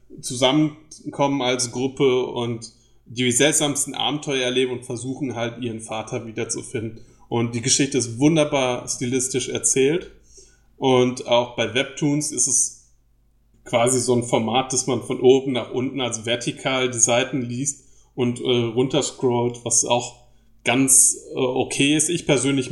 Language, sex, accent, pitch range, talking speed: German, male, German, 115-130 Hz, 140 wpm